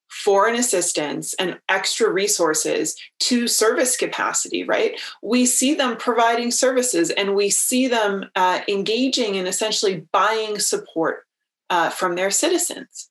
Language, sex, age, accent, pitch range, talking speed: English, female, 30-49, American, 185-260 Hz, 130 wpm